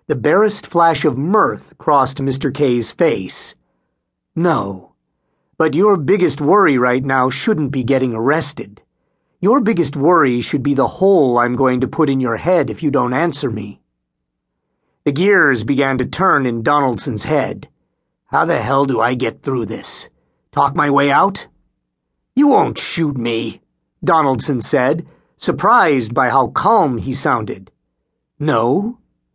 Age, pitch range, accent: 50-69, 115-175 Hz, American